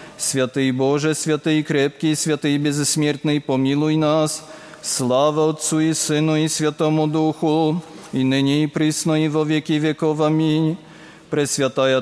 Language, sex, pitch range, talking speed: Polish, male, 150-155 Hz, 120 wpm